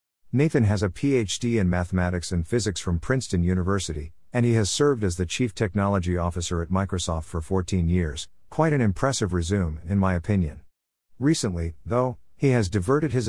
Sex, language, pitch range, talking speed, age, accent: male, English, 90-120 Hz, 170 wpm, 50-69, American